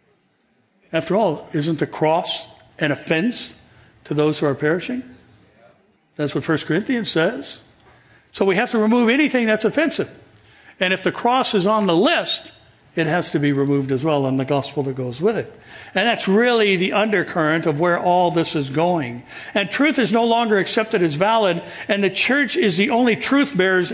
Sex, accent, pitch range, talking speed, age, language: male, American, 160-220 Hz, 185 wpm, 60-79, English